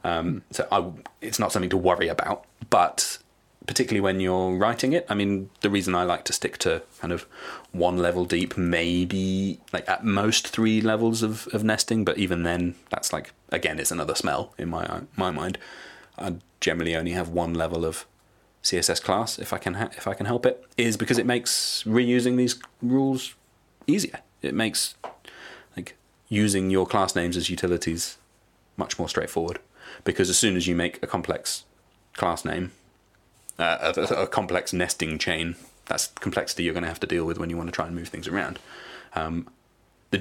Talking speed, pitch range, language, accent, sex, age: 190 wpm, 85-110 Hz, English, British, male, 30-49